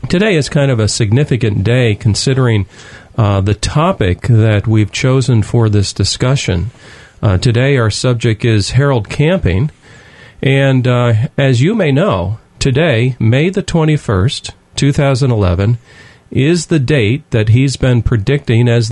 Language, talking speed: English, 135 wpm